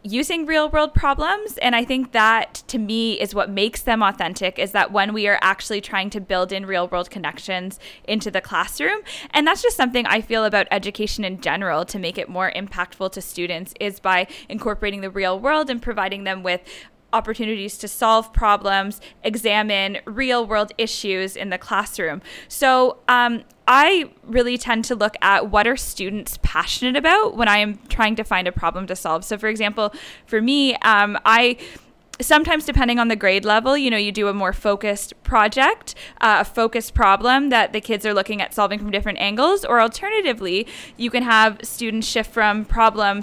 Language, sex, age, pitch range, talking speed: English, female, 10-29, 195-240 Hz, 185 wpm